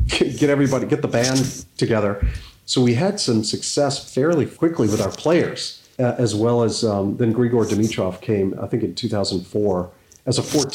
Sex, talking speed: male, 155 wpm